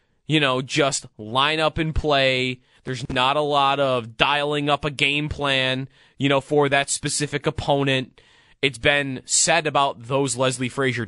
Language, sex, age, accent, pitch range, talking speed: English, male, 20-39, American, 125-160 Hz, 160 wpm